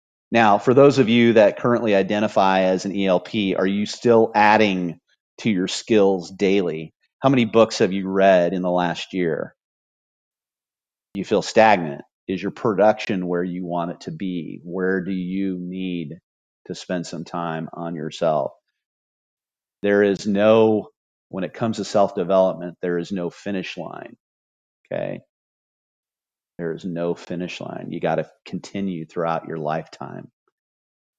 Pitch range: 85-100 Hz